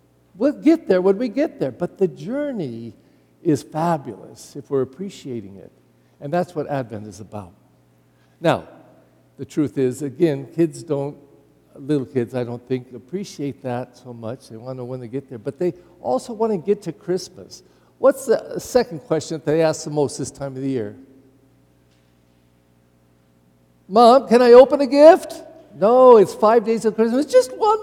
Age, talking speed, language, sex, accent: 50-69, 175 wpm, English, male, American